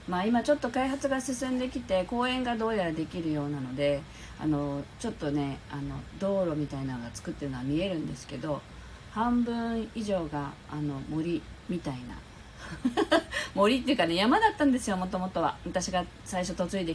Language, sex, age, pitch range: Japanese, female, 40-59, 145-210 Hz